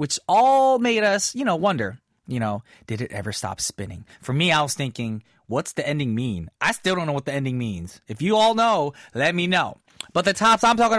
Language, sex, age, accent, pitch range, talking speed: English, male, 30-49, American, 140-210 Hz, 235 wpm